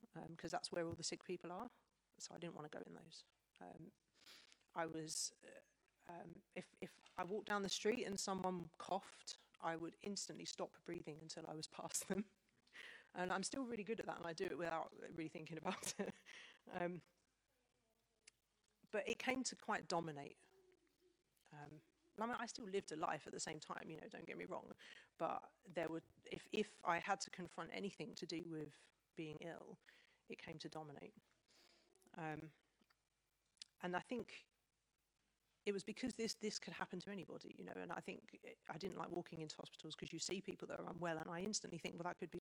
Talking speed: 200 wpm